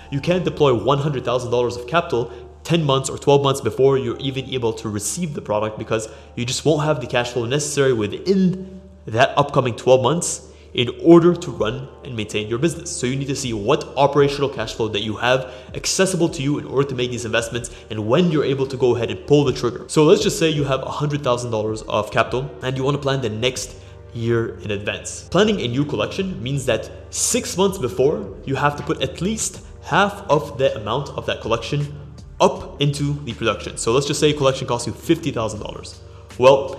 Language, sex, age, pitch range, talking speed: English, male, 20-39, 115-145 Hz, 205 wpm